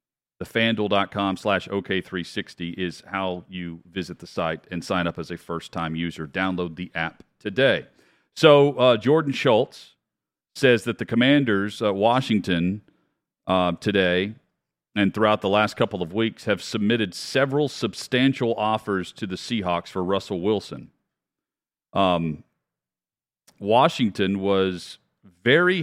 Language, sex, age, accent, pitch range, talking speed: English, male, 40-59, American, 90-115 Hz, 125 wpm